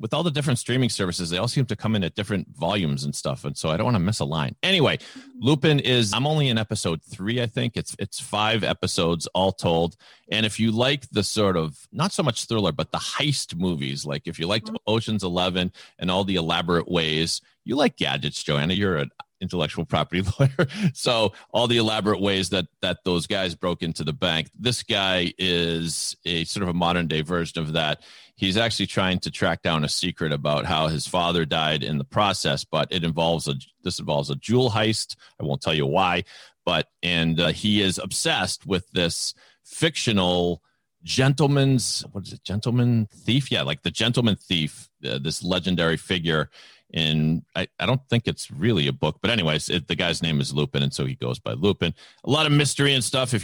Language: English